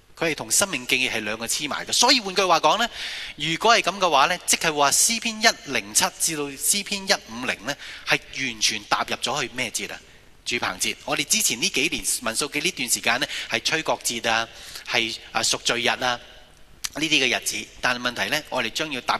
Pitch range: 115-165 Hz